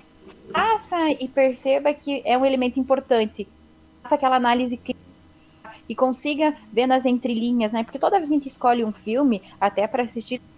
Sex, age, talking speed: female, 10-29, 170 wpm